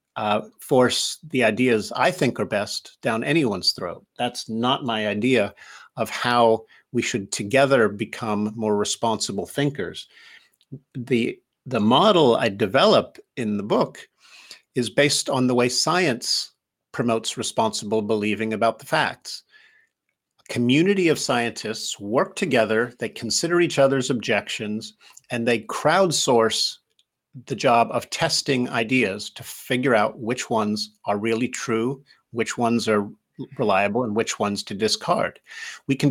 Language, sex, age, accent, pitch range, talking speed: English, male, 50-69, American, 115-140 Hz, 135 wpm